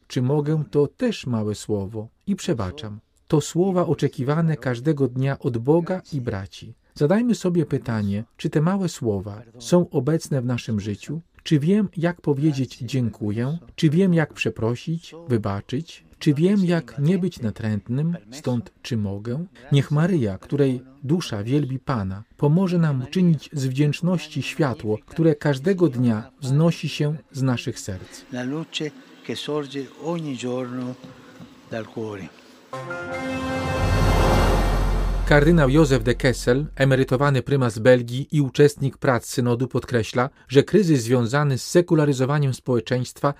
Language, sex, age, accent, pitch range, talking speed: Polish, male, 40-59, native, 115-155 Hz, 125 wpm